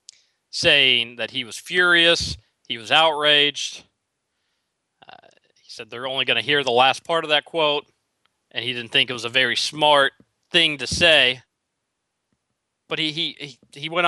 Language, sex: English, male